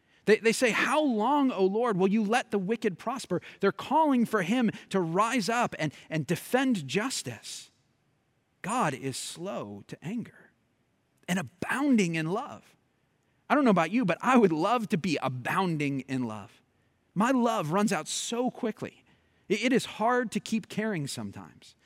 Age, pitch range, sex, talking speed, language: 30-49, 145-215 Hz, male, 165 wpm, English